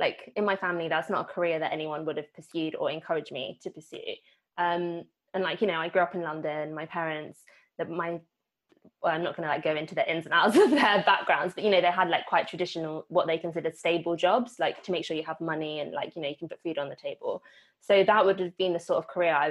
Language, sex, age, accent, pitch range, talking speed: English, female, 20-39, British, 165-215 Hz, 270 wpm